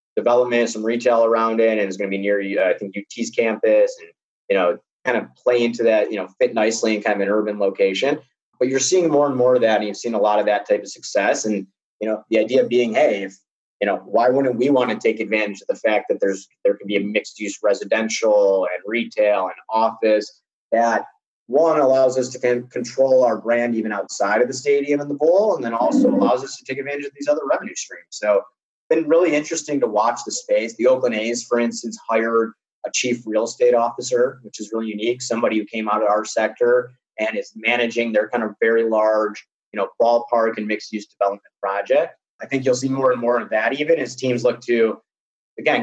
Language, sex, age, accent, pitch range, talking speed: English, male, 30-49, American, 110-135 Hz, 230 wpm